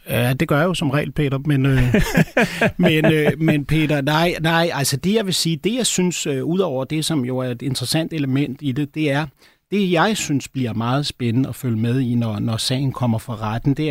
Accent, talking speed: native, 225 wpm